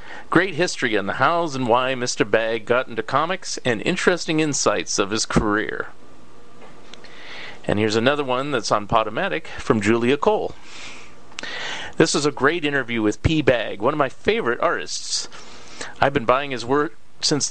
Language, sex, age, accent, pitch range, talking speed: English, male, 40-59, American, 115-160 Hz, 160 wpm